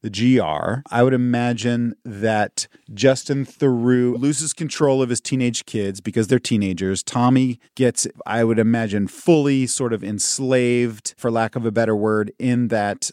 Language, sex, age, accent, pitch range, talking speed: English, male, 30-49, American, 105-130 Hz, 155 wpm